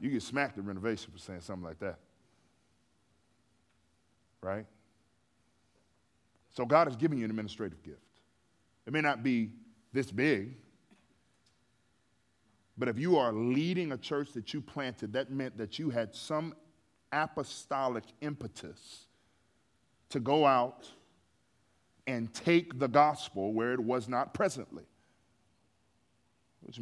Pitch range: 95-125 Hz